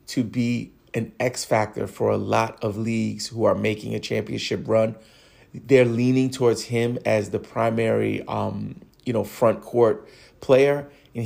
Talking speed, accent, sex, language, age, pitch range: 160 wpm, American, male, English, 30-49, 115-135 Hz